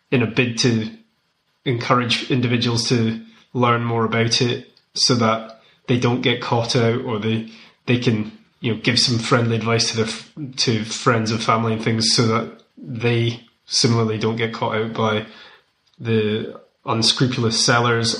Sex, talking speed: male, 160 wpm